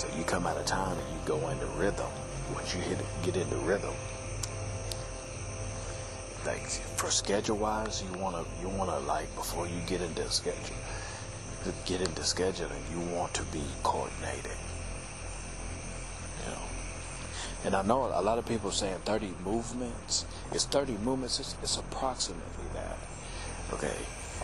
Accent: American